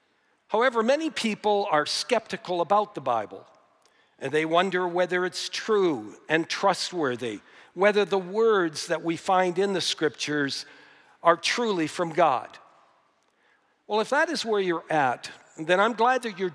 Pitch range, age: 150-200 Hz, 60-79